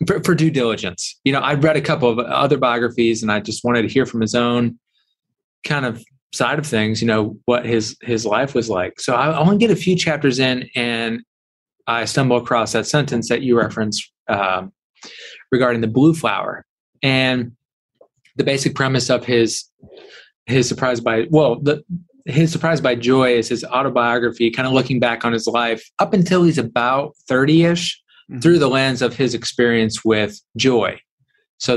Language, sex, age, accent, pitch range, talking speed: English, male, 20-39, American, 115-135 Hz, 185 wpm